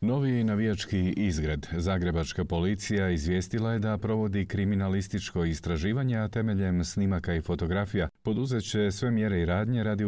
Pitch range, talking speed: 85-105 Hz, 125 wpm